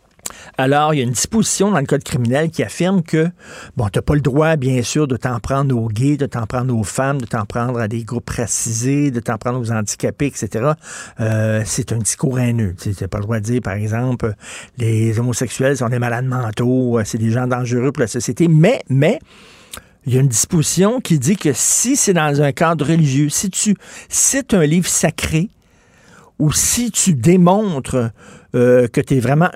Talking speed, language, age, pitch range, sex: 205 wpm, French, 60-79, 125-170 Hz, male